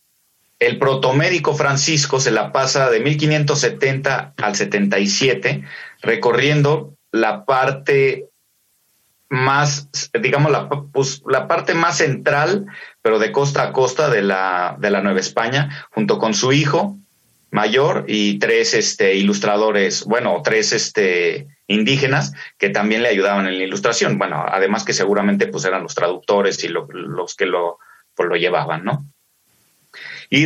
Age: 30-49